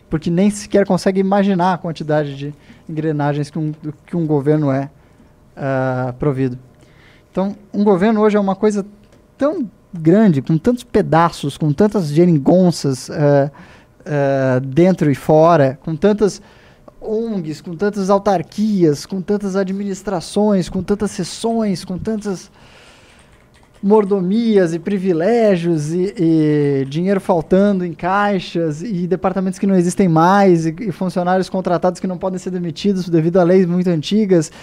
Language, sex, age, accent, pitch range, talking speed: Portuguese, male, 20-39, Brazilian, 160-205 Hz, 140 wpm